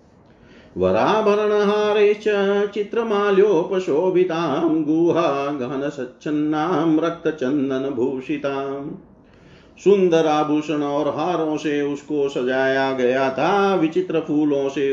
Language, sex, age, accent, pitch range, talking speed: Hindi, male, 50-69, native, 135-185 Hz, 50 wpm